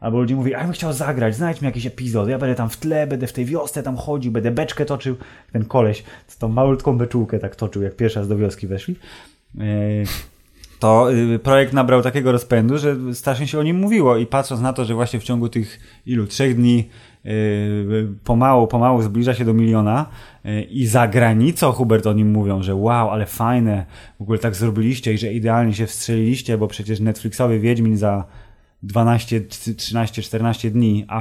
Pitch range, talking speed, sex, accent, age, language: 110-130 Hz, 185 wpm, male, native, 20-39, Polish